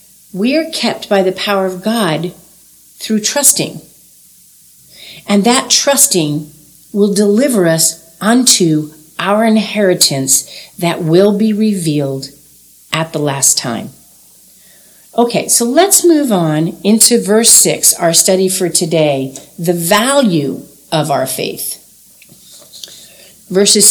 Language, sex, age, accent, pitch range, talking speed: English, female, 50-69, American, 165-225 Hz, 115 wpm